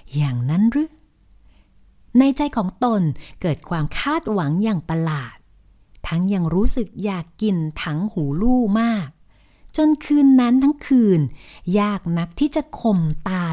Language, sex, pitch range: Thai, female, 160-240 Hz